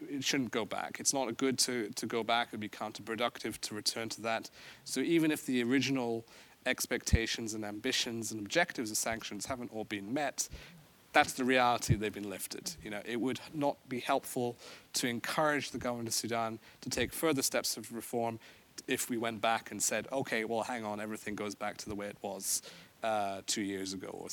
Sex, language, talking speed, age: male, English, 195 wpm, 30-49